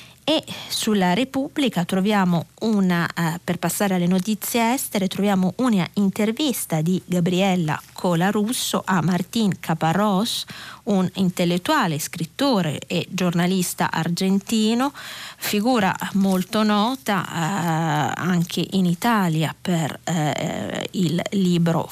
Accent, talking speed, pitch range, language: native, 100 wpm, 170-210 Hz, Italian